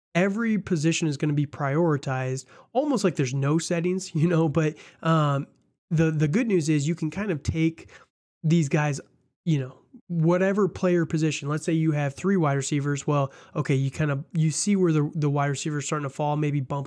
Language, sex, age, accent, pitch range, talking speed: English, male, 20-39, American, 140-165 Hz, 205 wpm